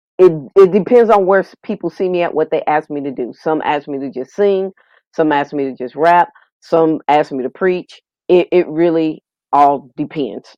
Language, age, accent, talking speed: English, 40-59, American, 210 wpm